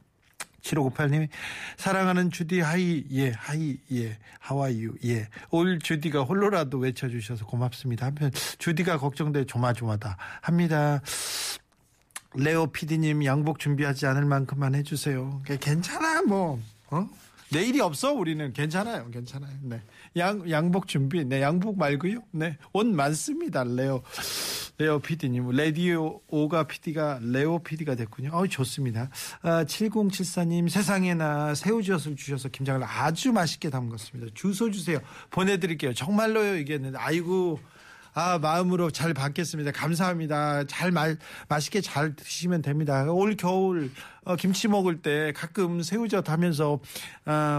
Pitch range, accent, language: 140-180 Hz, native, Korean